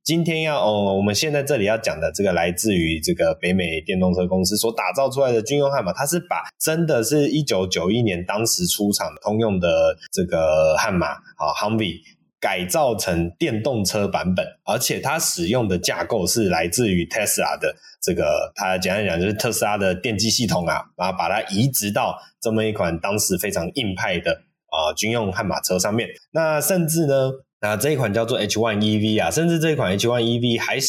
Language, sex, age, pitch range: Chinese, male, 20-39, 100-140 Hz